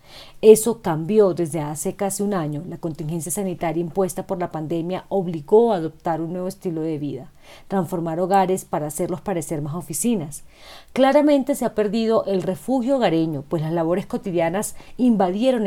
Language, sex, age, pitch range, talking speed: Spanish, female, 40-59, 165-220 Hz, 155 wpm